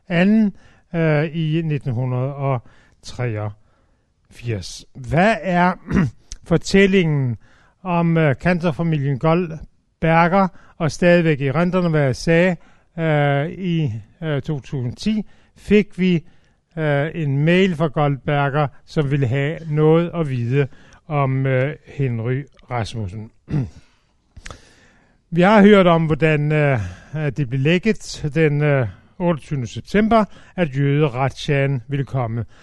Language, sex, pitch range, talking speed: Danish, male, 135-175 Hz, 105 wpm